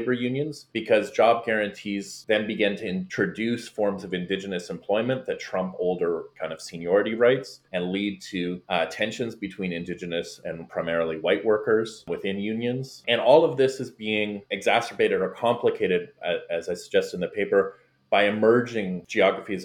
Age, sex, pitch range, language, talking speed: 30-49, male, 95-125 Hz, English, 155 wpm